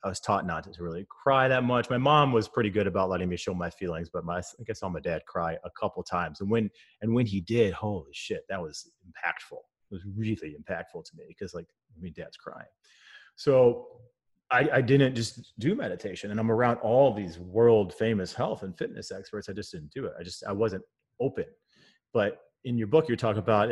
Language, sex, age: English, male, 30-49